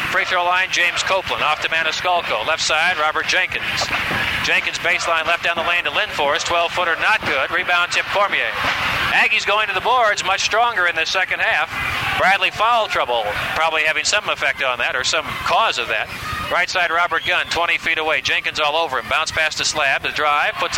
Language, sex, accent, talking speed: English, male, American, 200 wpm